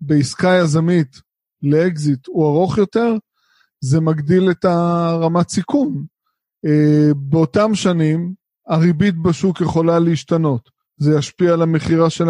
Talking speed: 105 wpm